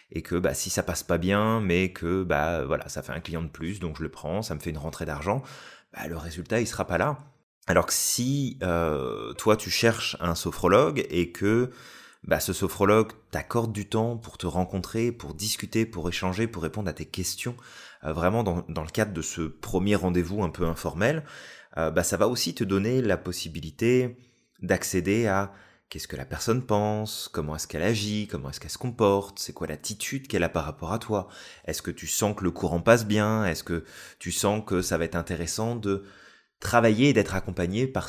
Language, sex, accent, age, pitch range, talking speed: French, male, French, 30-49, 85-110 Hz, 215 wpm